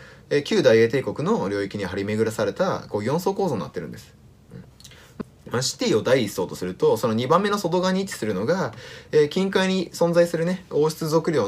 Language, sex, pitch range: Japanese, male, 115-195 Hz